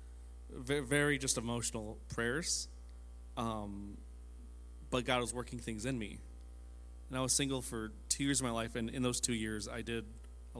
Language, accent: English, American